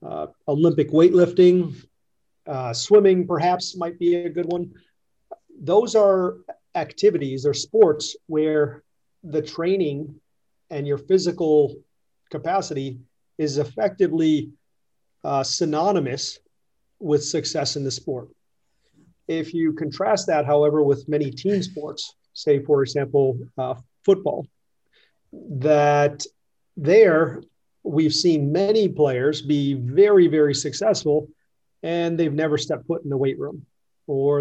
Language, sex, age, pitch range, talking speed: Italian, male, 40-59, 145-180 Hz, 115 wpm